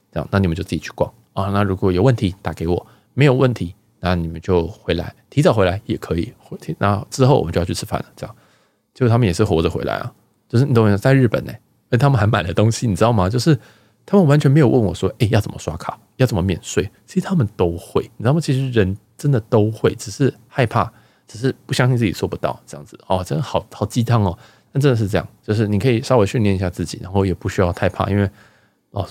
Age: 20-39